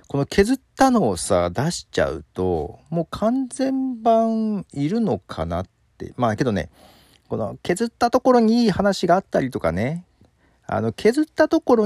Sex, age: male, 40-59